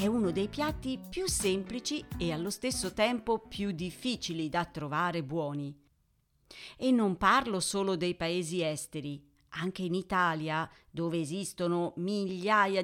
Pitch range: 160-225 Hz